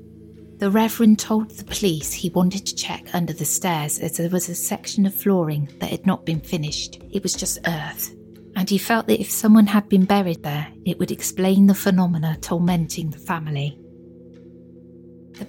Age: 30-49